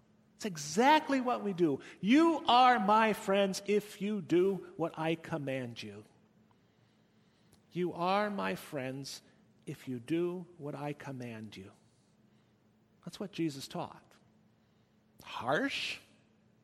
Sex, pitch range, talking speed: male, 175-230 Hz, 115 wpm